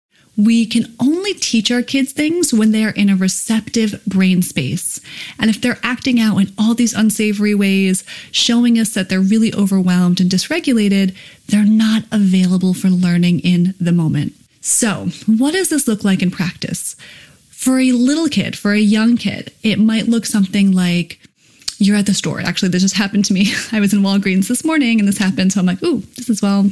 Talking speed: 195 wpm